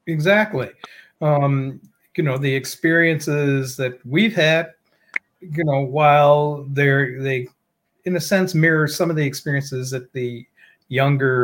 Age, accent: 40-59, American